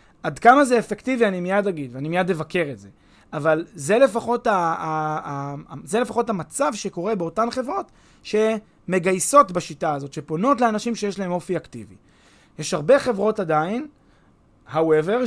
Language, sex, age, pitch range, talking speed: Hebrew, male, 20-39, 155-215 Hz, 155 wpm